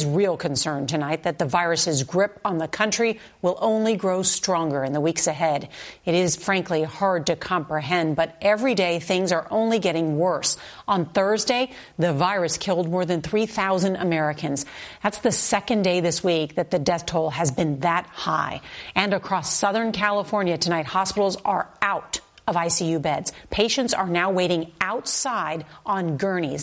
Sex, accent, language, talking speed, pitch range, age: female, American, English, 165 wpm, 165-205 Hz, 40-59